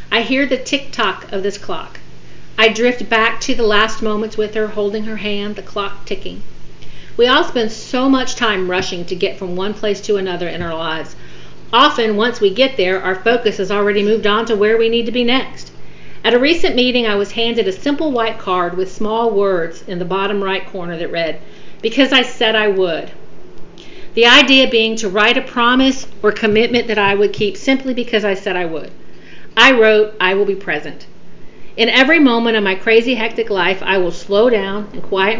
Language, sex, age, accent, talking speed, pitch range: English, female, 40-59, American, 205 wpm, 190-230 Hz